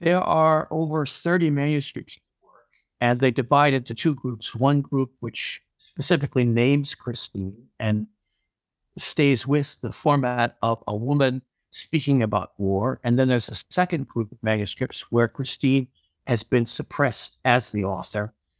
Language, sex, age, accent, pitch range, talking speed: German, male, 60-79, American, 110-140 Hz, 140 wpm